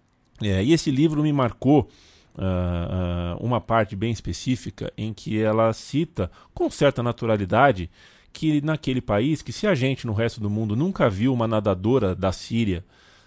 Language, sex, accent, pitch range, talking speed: Portuguese, male, Brazilian, 100-150 Hz, 150 wpm